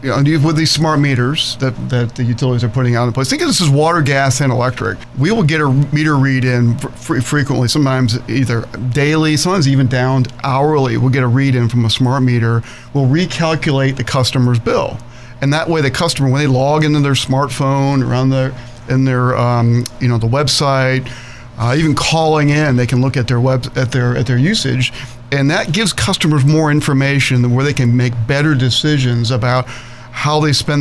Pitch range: 125-145 Hz